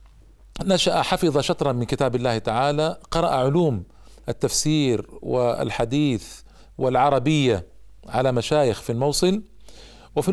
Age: 50-69